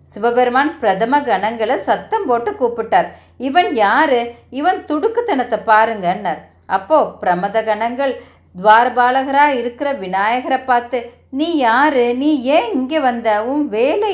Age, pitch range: 50-69, 220-290 Hz